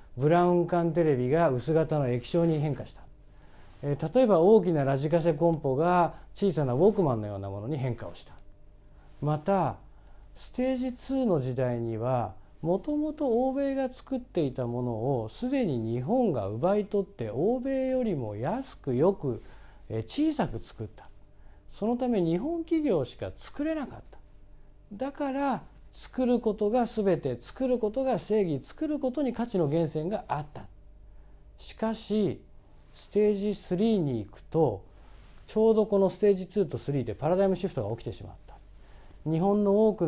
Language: Japanese